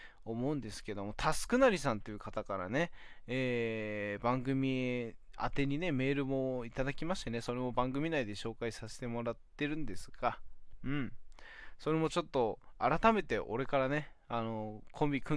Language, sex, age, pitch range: Japanese, male, 20-39, 115-155 Hz